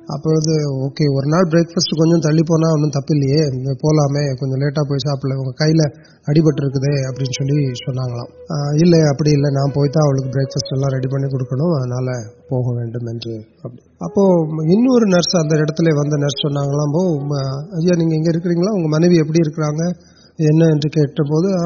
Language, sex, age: Urdu, male, 30-49